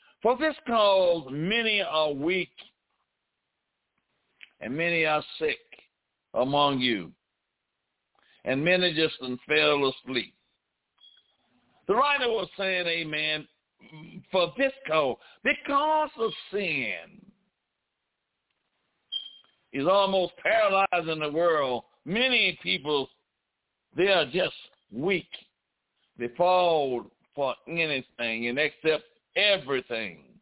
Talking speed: 90 wpm